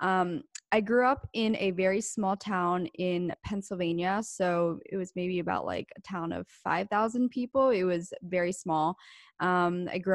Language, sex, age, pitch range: English, female, 20-39, 170-200 Hz